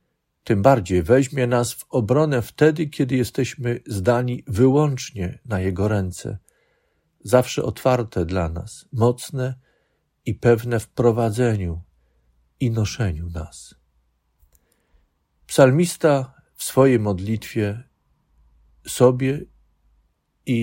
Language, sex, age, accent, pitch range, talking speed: Polish, male, 50-69, native, 95-130 Hz, 95 wpm